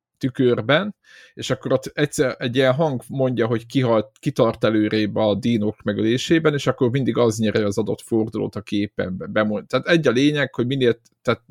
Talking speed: 175 wpm